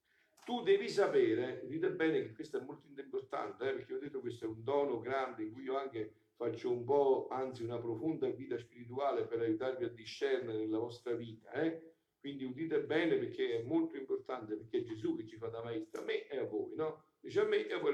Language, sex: Italian, male